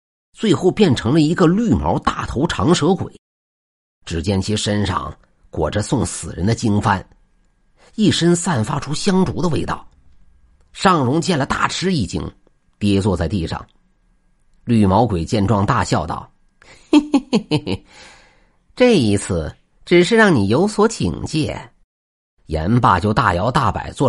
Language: Chinese